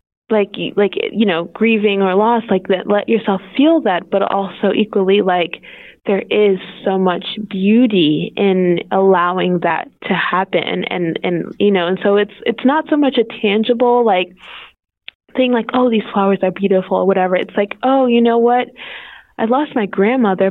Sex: female